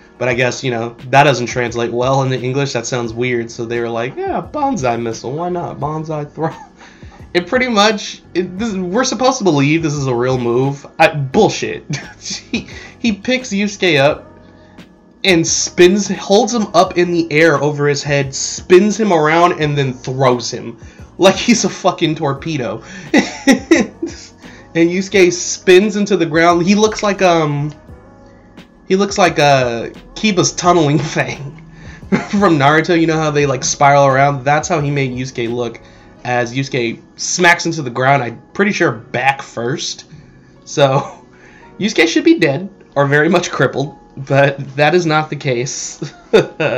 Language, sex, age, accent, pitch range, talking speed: English, male, 20-39, American, 130-180 Hz, 165 wpm